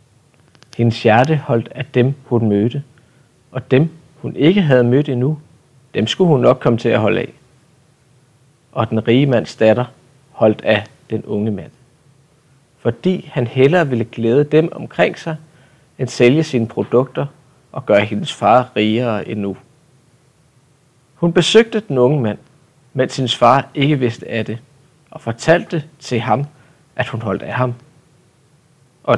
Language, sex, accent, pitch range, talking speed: Danish, male, native, 120-150 Hz, 150 wpm